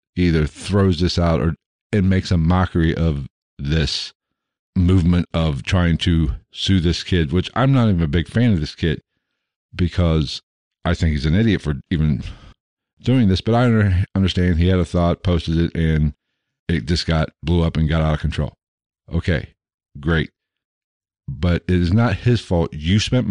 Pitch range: 80-100 Hz